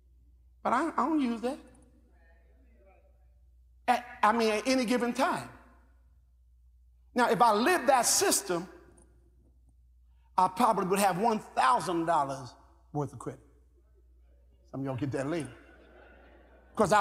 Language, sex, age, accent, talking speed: English, male, 50-69, American, 115 wpm